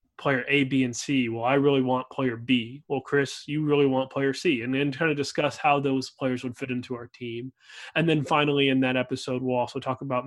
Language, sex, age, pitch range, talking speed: English, male, 20-39, 130-145 Hz, 240 wpm